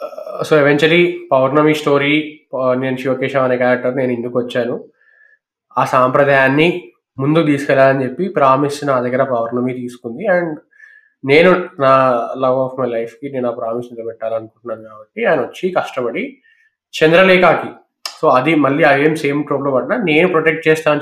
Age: 20-39